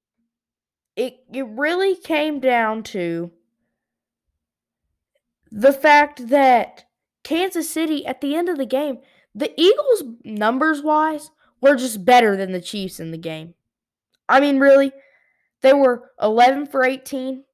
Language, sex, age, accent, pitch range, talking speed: English, female, 20-39, American, 230-285 Hz, 130 wpm